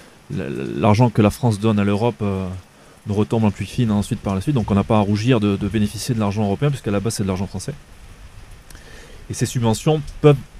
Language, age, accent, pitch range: French, 20-39, French, 100-120 Hz